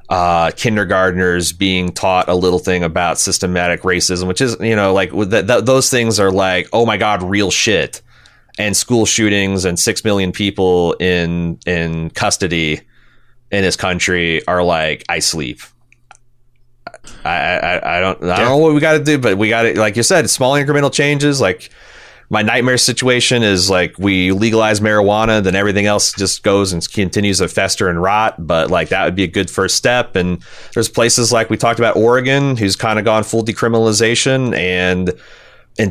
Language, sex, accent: English, male, American